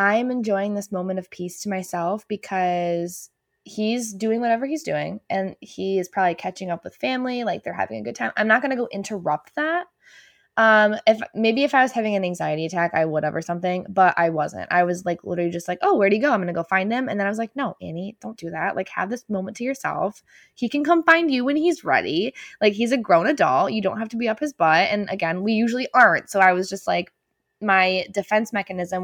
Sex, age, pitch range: female, 20-39, 180-225 Hz